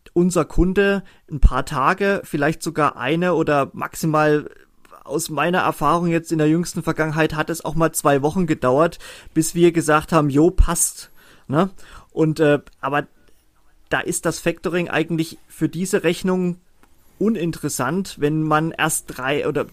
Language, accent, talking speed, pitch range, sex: German, German, 145 wpm, 145-180 Hz, male